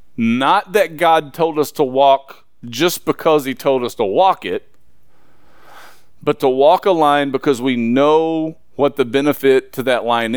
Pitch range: 135-190 Hz